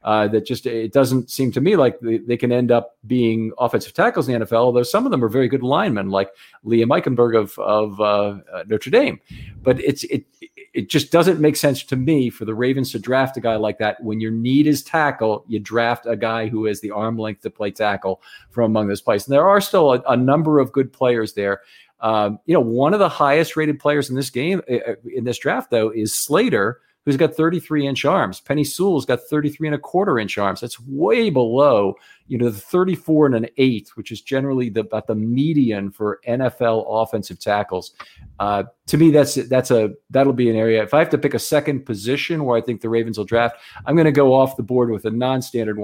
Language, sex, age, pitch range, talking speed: English, male, 50-69, 110-140 Hz, 230 wpm